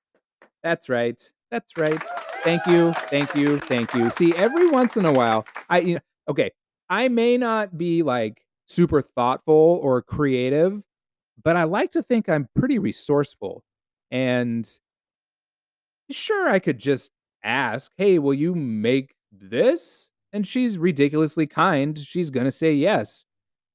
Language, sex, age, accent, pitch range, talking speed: English, male, 30-49, American, 140-210 Hz, 135 wpm